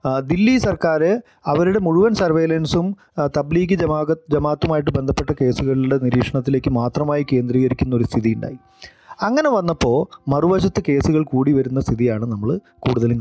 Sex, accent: male, native